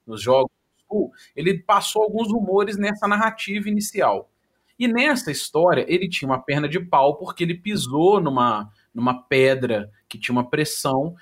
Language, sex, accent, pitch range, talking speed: Portuguese, male, Brazilian, 140-200 Hz, 160 wpm